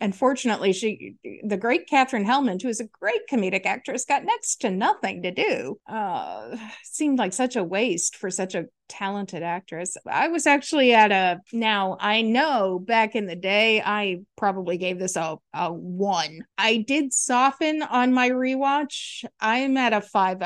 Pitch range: 195-255 Hz